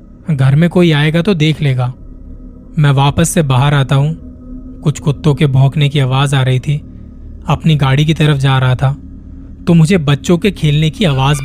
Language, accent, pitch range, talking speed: Hindi, native, 130-165 Hz, 190 wpm